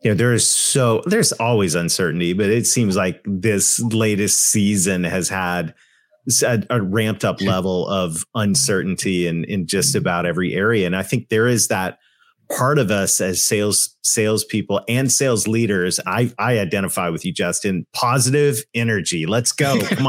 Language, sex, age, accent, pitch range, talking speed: English, male, 30-49, American, 95-125 Hz, 165 wpm